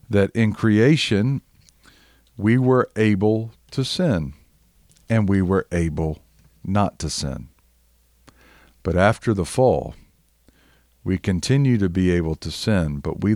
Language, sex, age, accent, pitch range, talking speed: English, male, 50-69, American, 85-115 Hz, 125 wpm